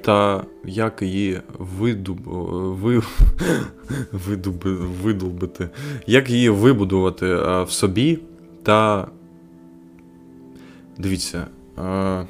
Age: 20-39